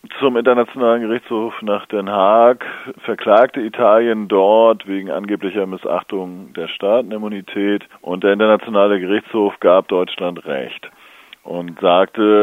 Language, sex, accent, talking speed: German, male, German, 110 wpm